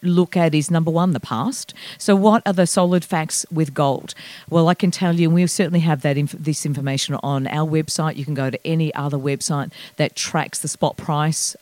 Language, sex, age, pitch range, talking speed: English, female, 40-59, 150-185 Hz, 210 wpm